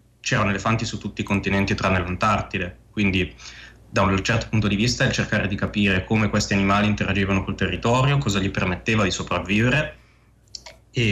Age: 20-39